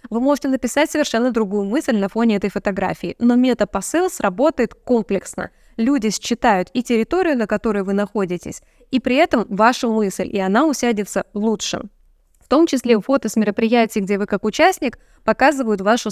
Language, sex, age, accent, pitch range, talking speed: Russian, female, 20-39, native, 205-270 Hz, 160 wpm